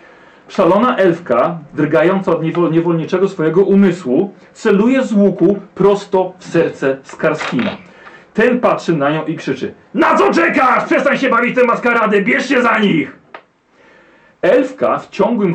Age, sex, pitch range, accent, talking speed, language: 40-59, male, 170-210 Hz, native, 135 wpm, Polish